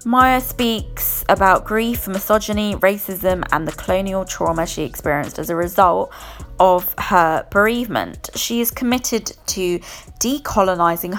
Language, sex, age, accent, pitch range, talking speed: English, female, 20-39, British, 165-230 Hz, 125 wpm